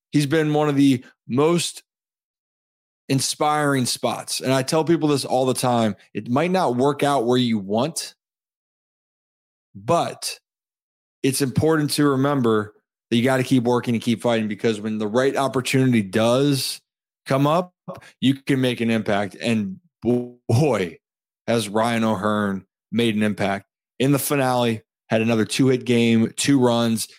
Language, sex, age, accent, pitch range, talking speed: English, male, 20-39, American, 115-140 Hz, 150 wpm